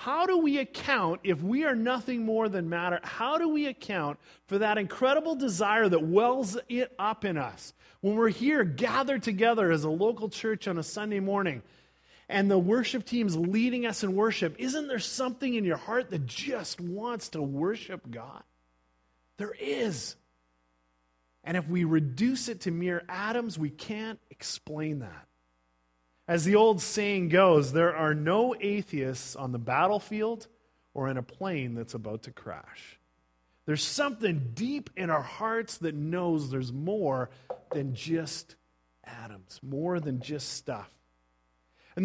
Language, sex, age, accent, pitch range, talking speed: English, male, 30-49, American, 135-220 Hz, 155 wpm